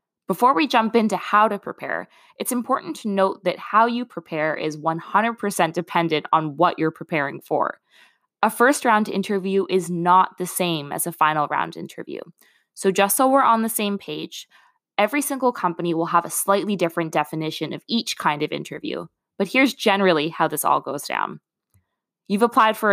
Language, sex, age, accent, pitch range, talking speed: English, female, 20-39, American, 165-220 Hz, 180 wpm